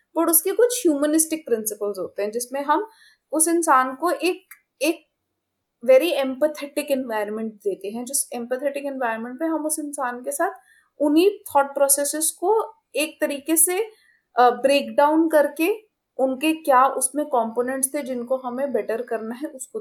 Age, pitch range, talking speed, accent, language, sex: 20-39, 230-290 Hz, 135 wpm, native, Hindi, female